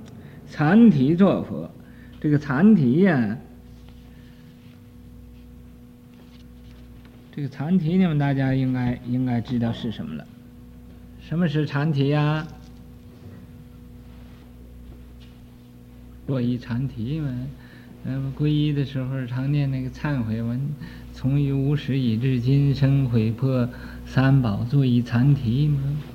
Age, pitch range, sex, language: 50-69, 110-140 Hz, male, Chinese